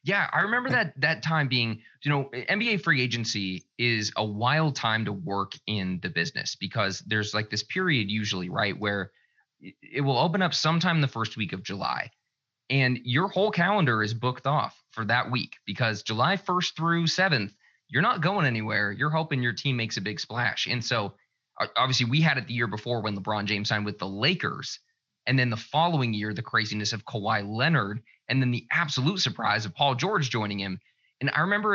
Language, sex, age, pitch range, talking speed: English, male, 20-39, 110-150 Hz, 200 wpm